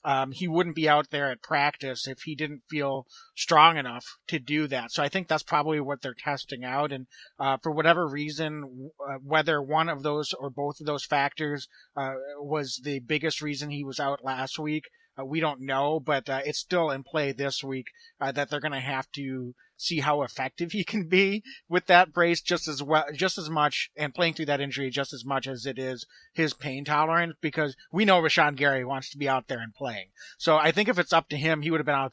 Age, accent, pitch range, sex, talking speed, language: 30-49, American, 135-160 Hz, male, 230 wpm, English